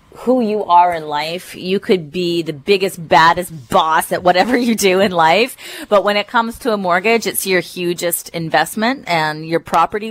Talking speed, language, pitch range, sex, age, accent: 190 wpm, English, 170-210 Hz, female, 30-49, American